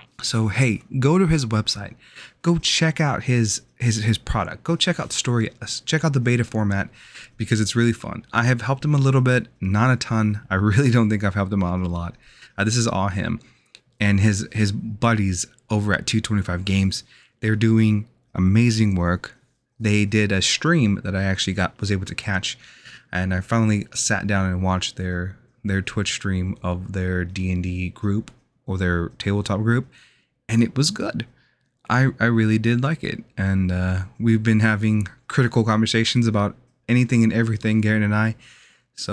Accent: American